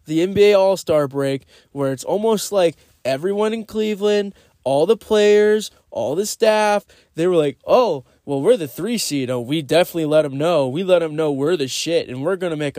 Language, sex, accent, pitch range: English, male, American, 180-290 Hz